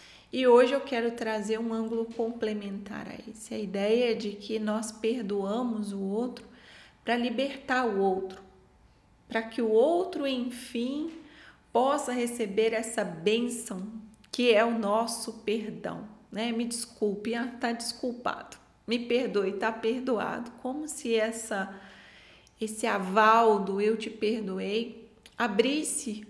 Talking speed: 125 wpm